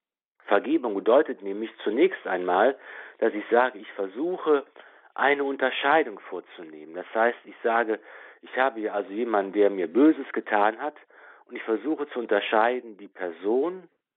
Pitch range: 115-175 Hz